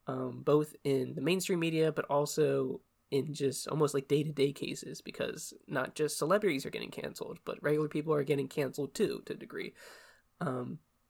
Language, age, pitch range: English, 20-39, 135-155 Hz